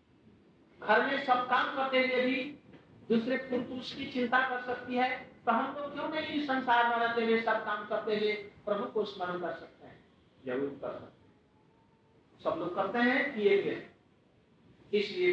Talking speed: 165 wpm